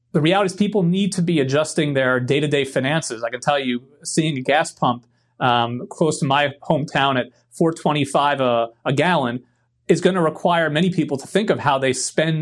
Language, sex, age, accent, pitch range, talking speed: English, male, 30-49, American, 135-175 Hz, 200 wpm